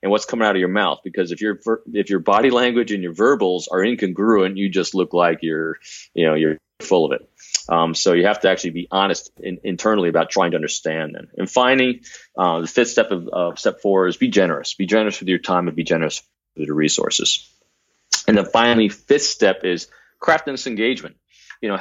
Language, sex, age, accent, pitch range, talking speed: English, male, 30-49, American, 90-105 Hz, 220 wpm